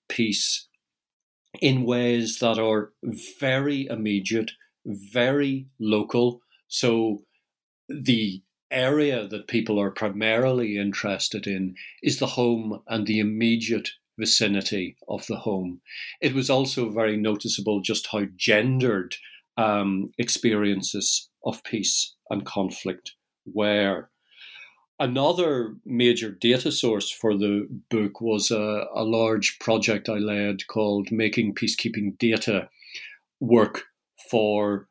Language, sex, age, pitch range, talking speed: English, male, 50-69, 105-130 Hz, 110 wpm